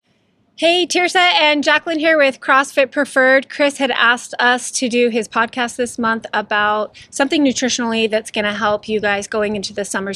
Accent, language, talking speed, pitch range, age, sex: American, English, 185 wpm, 230-270 Hz, 20-39, female